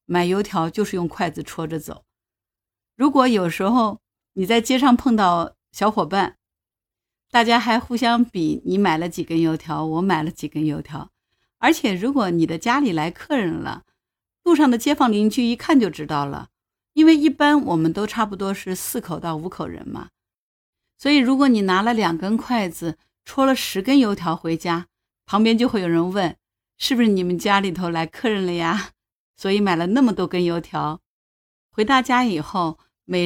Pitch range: 165-225 Hz